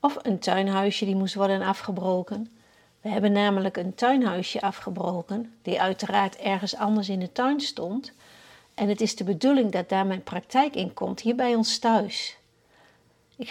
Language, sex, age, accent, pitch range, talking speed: Dutch, female, 50-69, Dutch, 195-240 Hz, 165 wpm